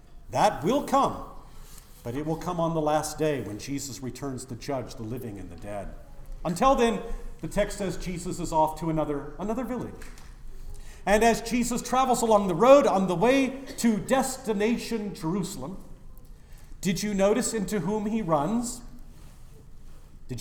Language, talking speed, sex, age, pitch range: English, 160 wpm, male, 50-69, 140-220 Hz